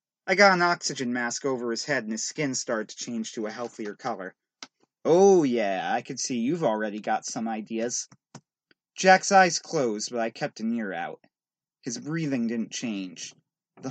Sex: male